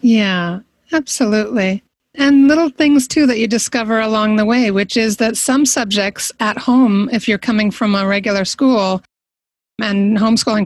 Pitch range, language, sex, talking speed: 190-240 Hz, English, female, 160 wpm